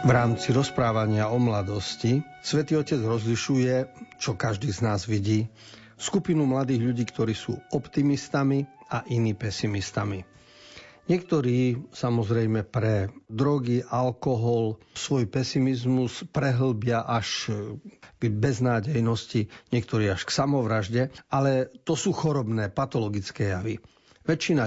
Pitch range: 110-135 Hz